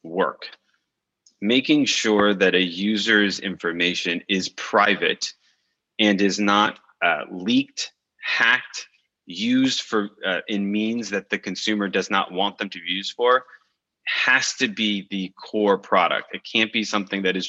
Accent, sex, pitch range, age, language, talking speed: American, male, 100-115 Hz, 30-49, English, 150 wpm